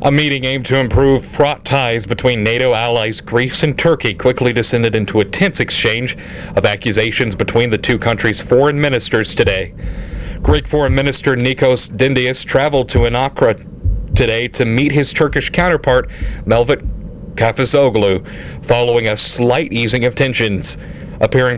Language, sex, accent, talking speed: English, male, American, 140 wpm